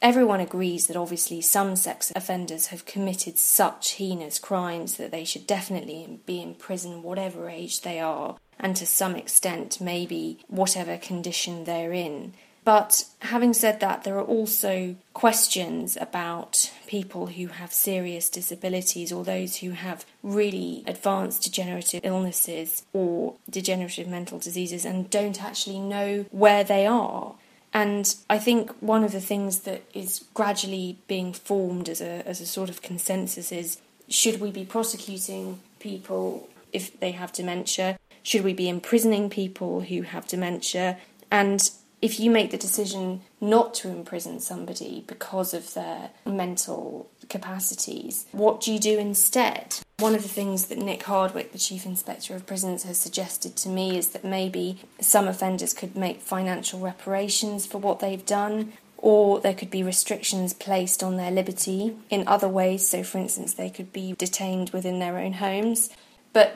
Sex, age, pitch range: female, 20-39, 180-205 Hz